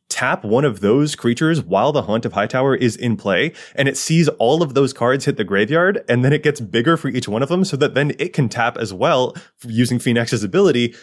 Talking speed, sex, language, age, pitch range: 245 wpm, male, English, 20-39, 125-180 Hz